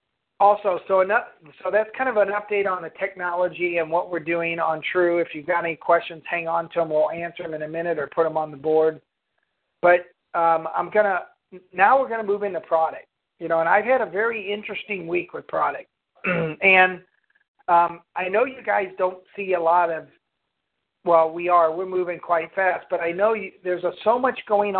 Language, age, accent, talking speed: English, 50-69, American, 215 wpm